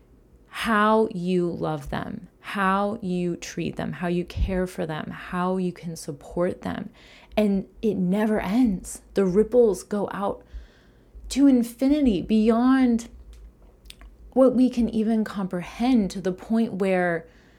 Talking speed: 130 wpm